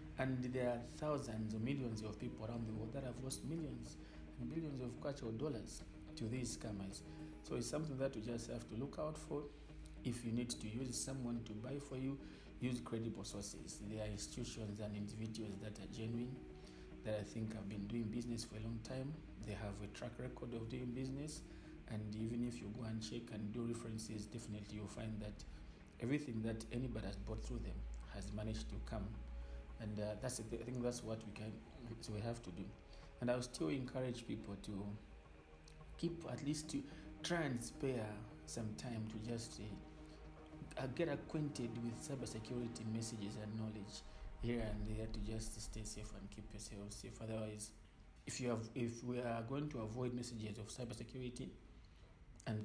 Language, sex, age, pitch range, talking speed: English, male, 50-69, 105-125 Hz, 185 wpm